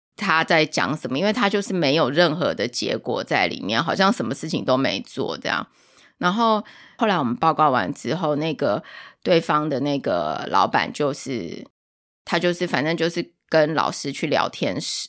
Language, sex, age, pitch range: Chinese, female, 20-39, 150-215 Hz